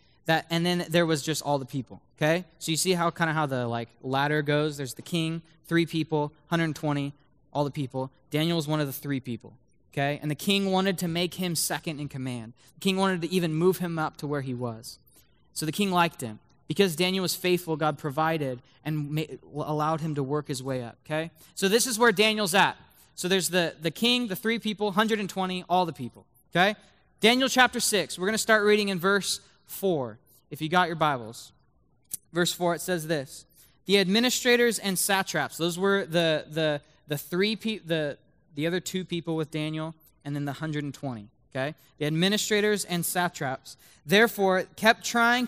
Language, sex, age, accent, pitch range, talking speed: English, male, 20-39, American, 145-185 Hz, 200 wpm